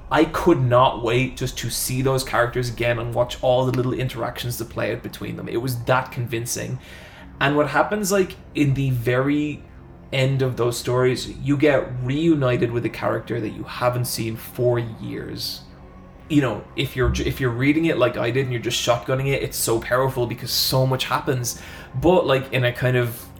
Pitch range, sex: 115-135 Hz, male